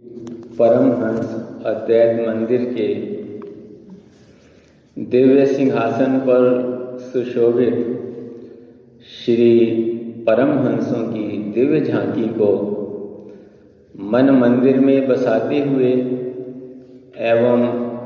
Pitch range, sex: 110-125 Hz, male